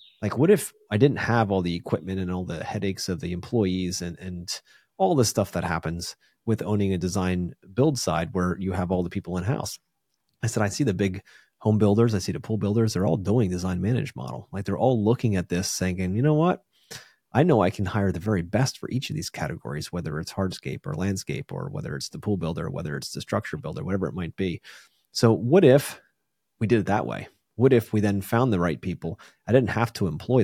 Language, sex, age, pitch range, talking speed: English, male, 30-49, 90-120 Hz, 235 wpm